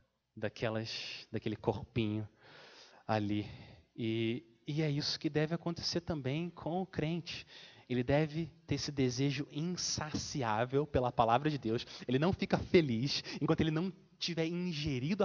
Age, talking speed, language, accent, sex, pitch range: 30-49, 135 wpm, Portuguese, Brazilian, male, 120-185 Hz